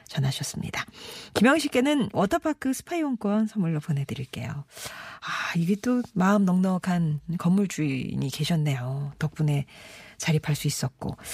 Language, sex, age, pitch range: Korean, female, 40-59, 155-235 Hz